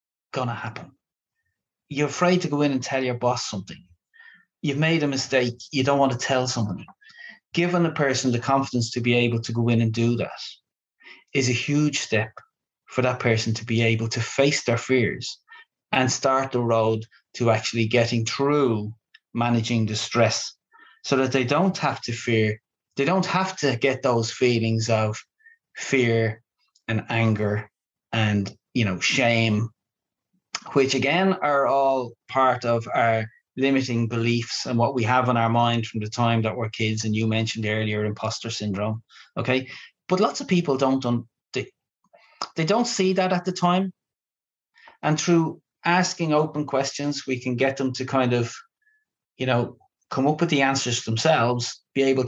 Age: 30-49